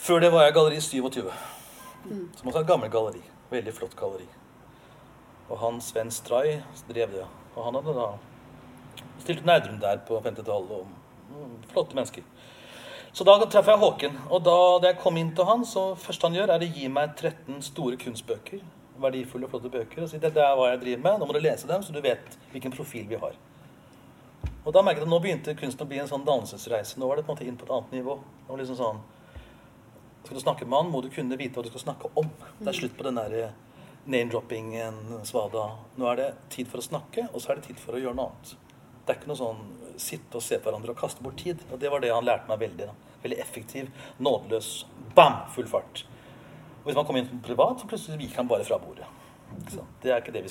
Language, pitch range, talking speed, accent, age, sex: English, 125-170 Hz, 235 wpm, Swedish, 40-59, male